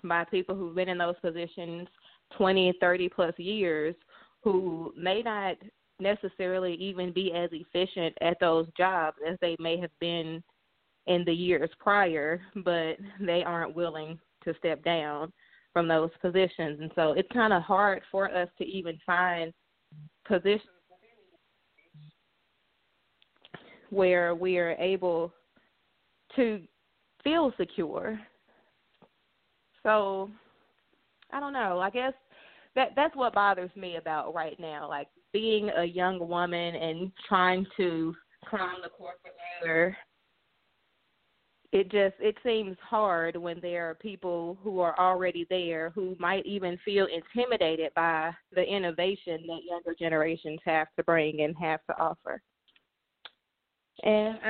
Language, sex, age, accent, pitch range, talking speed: English, female, 20-39, American, 170-205 Hz, 130 wpm